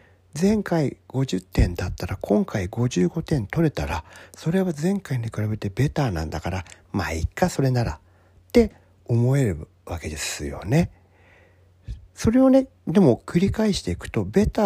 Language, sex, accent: Japanese, male, native